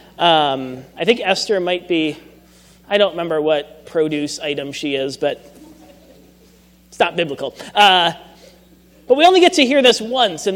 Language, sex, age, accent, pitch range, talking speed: English, male, 30-49, American, 155-210 Hz, 160 wpm